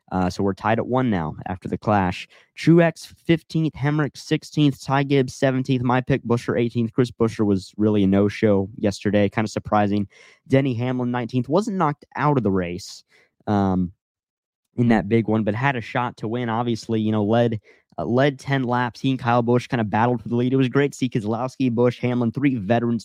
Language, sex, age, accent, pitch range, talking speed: English, male, 20-39, American, 105-130 Hz, 205 wpm